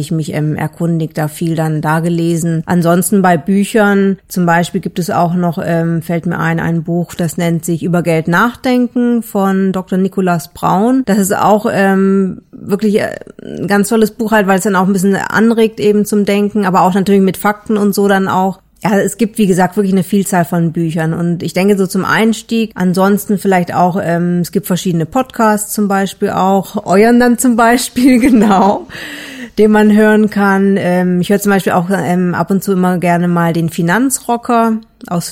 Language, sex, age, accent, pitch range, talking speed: German, female, 30-49, German, 180-215 Hz, 190 wpm